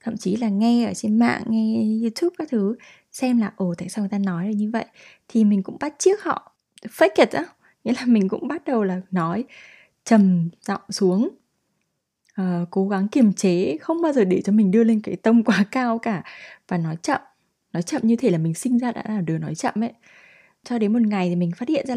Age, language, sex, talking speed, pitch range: 20-39, Vietnamese, female, 235 wpm, 195-245 Hz